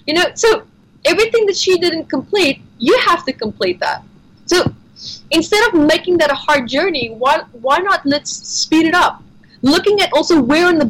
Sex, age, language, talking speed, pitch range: female, 20-39, English, 185 wpm, 265-355 Hz